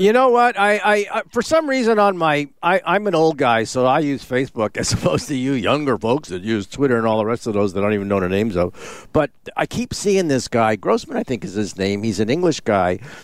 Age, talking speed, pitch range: 50-69, 270 wpm, 130-185 Hz